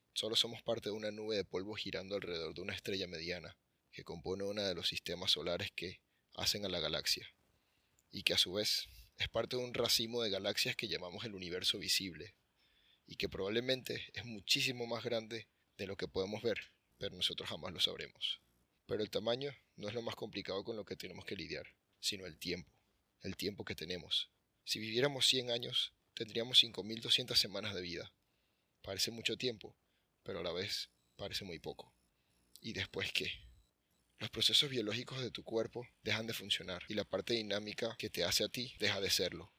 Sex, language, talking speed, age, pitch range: male, Spanish, 190 wpm, 30-49, 95-115 Hz